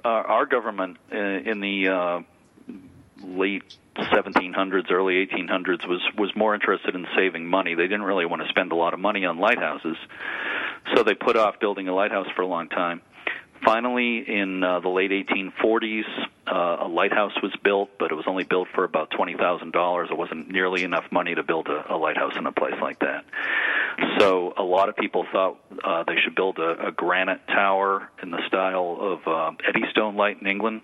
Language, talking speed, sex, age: English, 190 wpm, male, 40-59